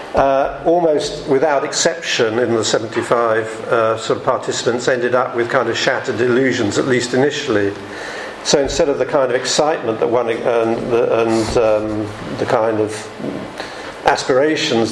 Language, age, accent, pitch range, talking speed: English, 50-69, British, 120-140 Hz, 155 wpm